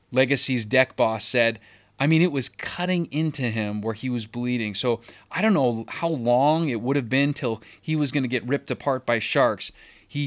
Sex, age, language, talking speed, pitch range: male, 30-49, English, 210 wpm, 120-160 Hz